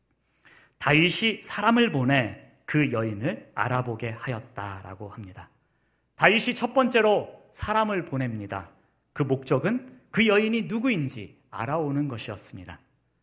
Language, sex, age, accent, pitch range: Korean, male, 40-59, native, 115-175 Hz